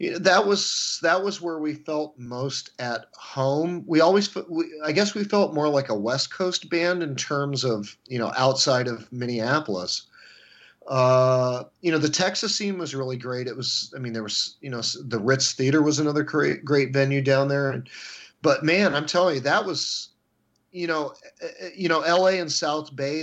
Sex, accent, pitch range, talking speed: male, American, 130-170 Hz, 185 wpm